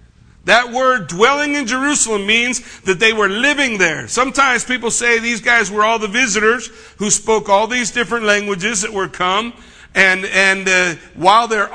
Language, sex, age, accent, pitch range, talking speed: English, male, 50-69, American, 175-240 Hz, 175 wpm